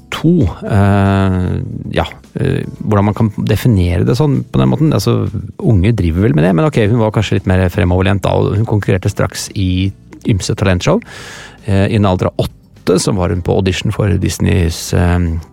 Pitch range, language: 95-115 Hz, English